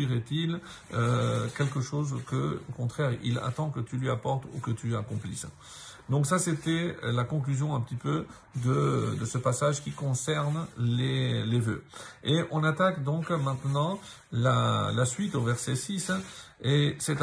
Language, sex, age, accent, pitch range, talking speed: French, male, 50-69, French, 125-155 Hz, 165 wpm